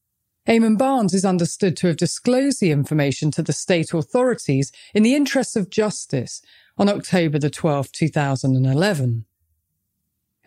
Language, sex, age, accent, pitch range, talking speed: English, female, 40-59, British, 150-220 Hz, 140 wpm